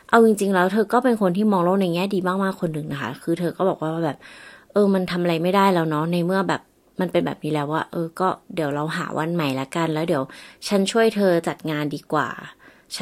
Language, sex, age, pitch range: Thai, female, 20-39, 150-195 Hz